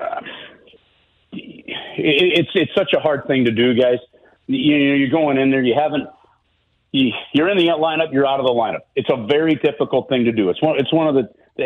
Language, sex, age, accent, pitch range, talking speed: English, male, 40-59, American, 120-150 Hz, 205 wpm